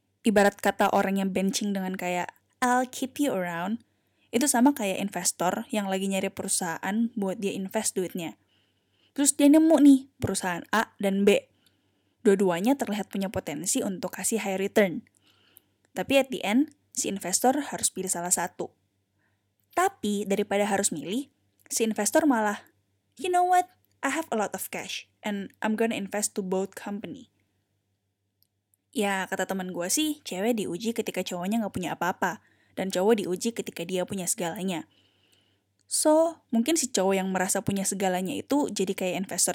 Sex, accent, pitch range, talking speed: female, native, 170-230 Hz, 155 wpm